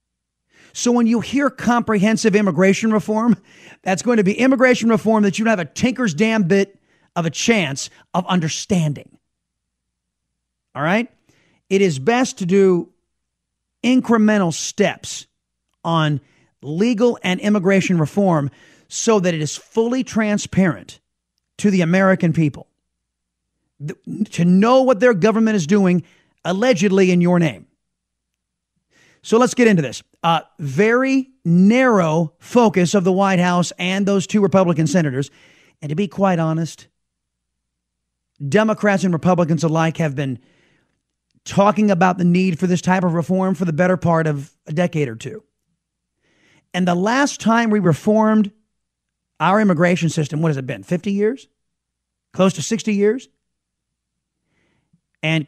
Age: 40-59